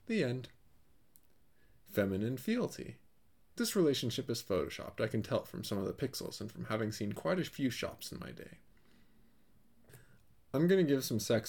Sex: male